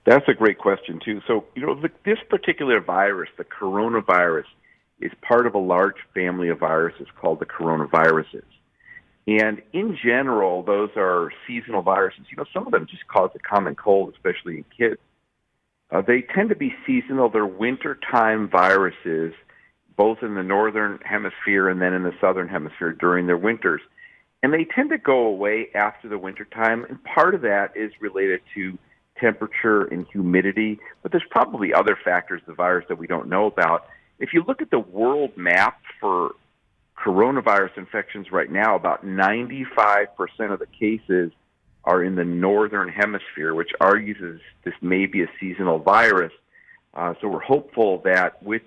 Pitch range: 90-115 Hz